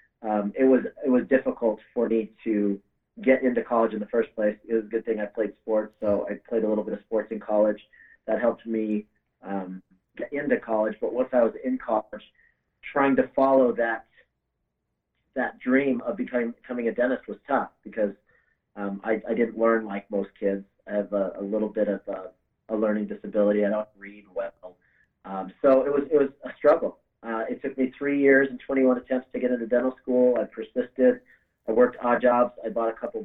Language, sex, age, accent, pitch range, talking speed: English, male, 30-49, American, 105-125 Hz, 210 wpm